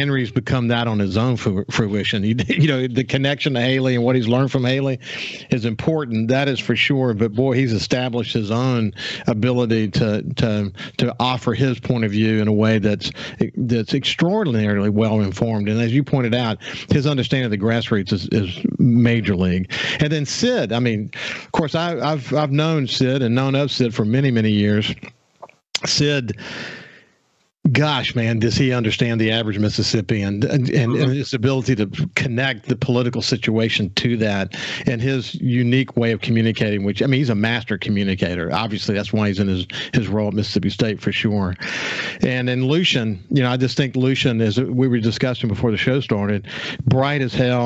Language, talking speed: English, 185 wpm